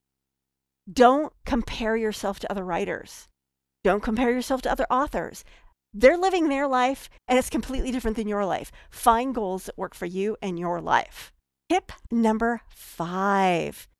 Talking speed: 150 wpm